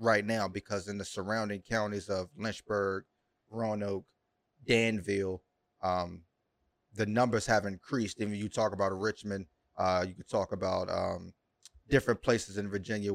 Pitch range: 100-125 Hz